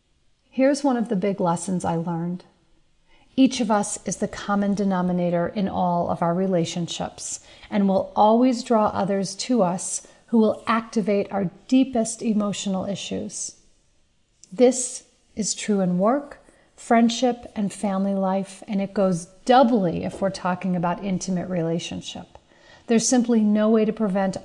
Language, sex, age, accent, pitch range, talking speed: English, female, 40-59, American, 185-225 Hz, 145 wpm